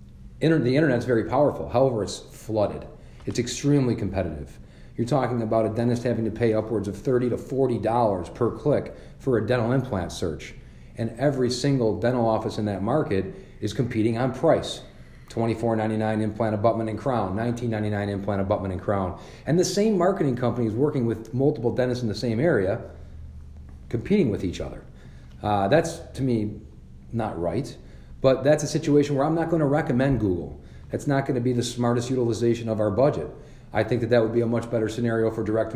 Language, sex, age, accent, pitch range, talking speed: English, male, 40-59, American, 100-125 Hz, 185 wpm